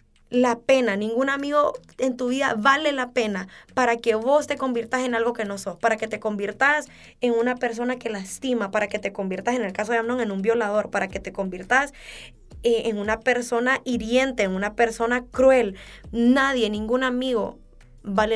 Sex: female